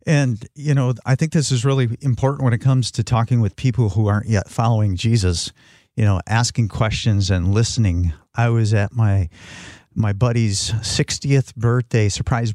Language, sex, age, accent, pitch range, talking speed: English, male, 50-69, American, 105-125 Hz, 170 wpm